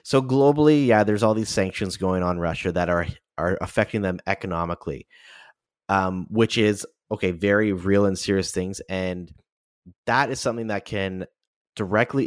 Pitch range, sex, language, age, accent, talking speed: 90-110 Hz, male, English, 30-49, American, 160 wpm